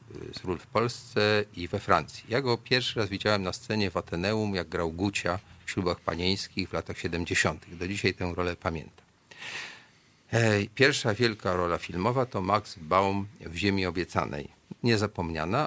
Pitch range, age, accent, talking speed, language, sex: 90-115 Hz, 40-59, native, 155 wpm, Polish, male